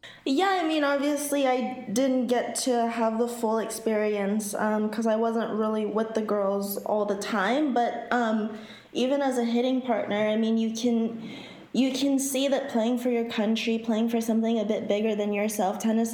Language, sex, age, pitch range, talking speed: English, female, 20-39, 210-240 Hz, 190 wpm